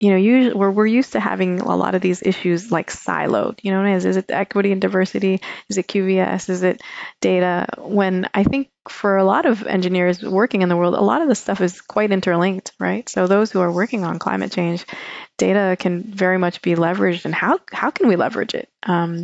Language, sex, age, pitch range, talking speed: English, female, 20-39, 180-220 Hz, 215 wpm